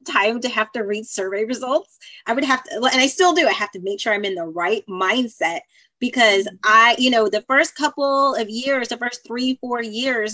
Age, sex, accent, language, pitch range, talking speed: 30-49, female, American, English, 220-315 Hz, 225 wpm